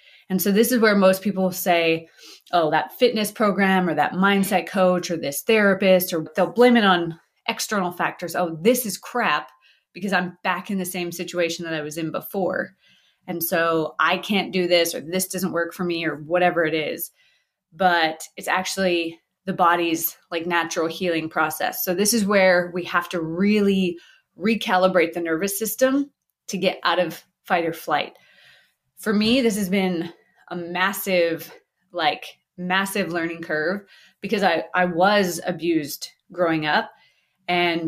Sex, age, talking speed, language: female, 20-39, 165 wpm, English